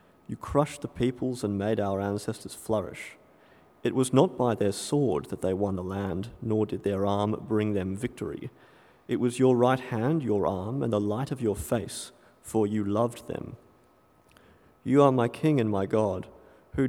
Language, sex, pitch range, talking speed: English, male, 100-125 Hz, 185 wpm